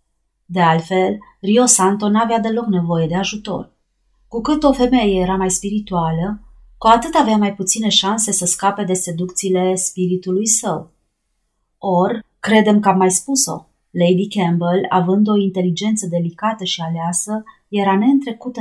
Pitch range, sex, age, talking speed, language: 175-220 Hz, female, 30-49, 140 wpm, Romanian